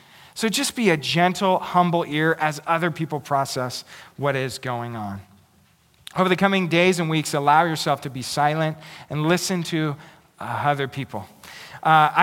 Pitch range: 155-220 Hz